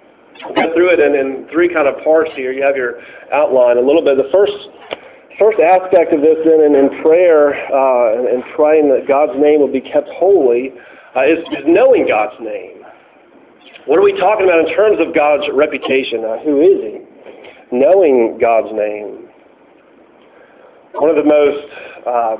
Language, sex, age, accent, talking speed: English, male, 40-59, American, 175 wpm